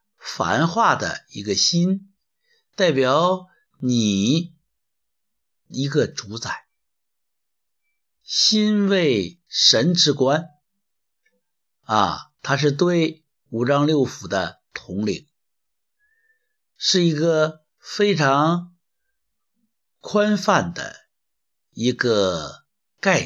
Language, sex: Chinese, male